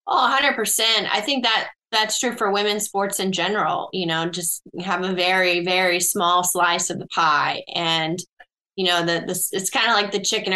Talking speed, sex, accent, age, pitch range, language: 210 wpm, female, American, 10-29, 175-210 Hz, English